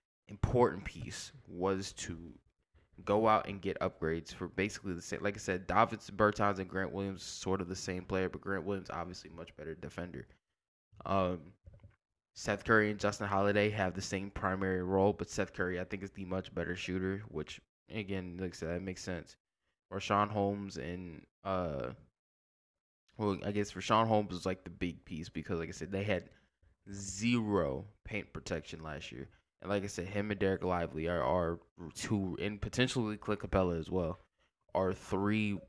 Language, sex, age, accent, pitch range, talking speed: English, male, 10-29, American, 85-100 Hz, 175 wpm